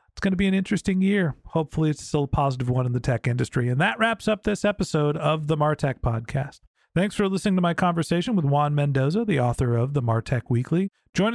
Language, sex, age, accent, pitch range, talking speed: English, male, 40-59, American, 155-195 Hz, 230 wpm